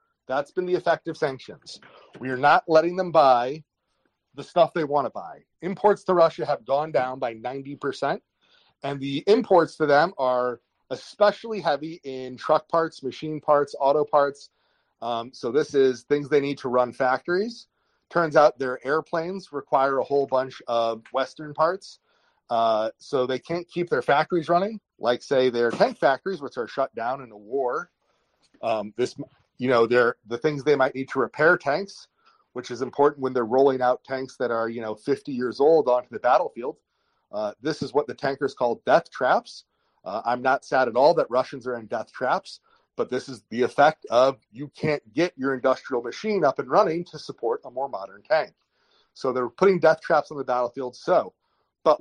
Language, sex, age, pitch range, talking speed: English, male, 30-49, 130-165 Hz, 190 wpm